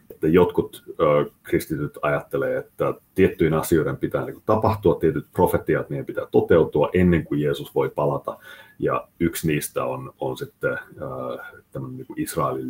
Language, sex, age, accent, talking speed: Finnish, male, 30-49, native, 130 wpm